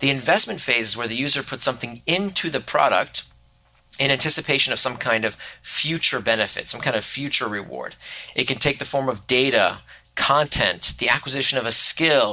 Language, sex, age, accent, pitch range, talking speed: English, male, 30-49, American, 120-165 Hz, 185 wpm